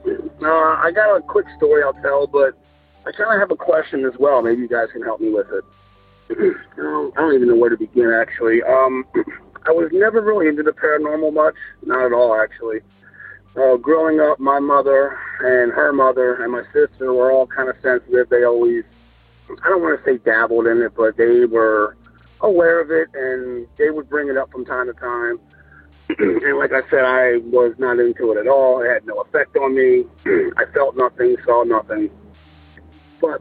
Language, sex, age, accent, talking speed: English, male, 40-59, American, 200 wpm